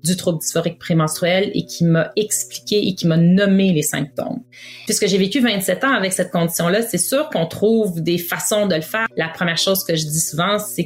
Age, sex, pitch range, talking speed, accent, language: 30-49, female, 170-205 Hz, 215 wpm, Canadian, French